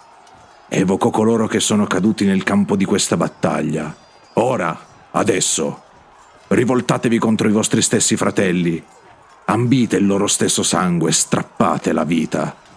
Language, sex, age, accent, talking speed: Italian, male, 50-69, native, 120 wpm